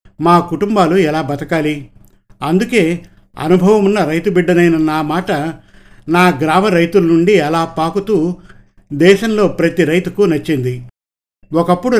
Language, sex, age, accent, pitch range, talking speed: Telugu, male, 50-69, native, 150-185 Hz, 110 wpm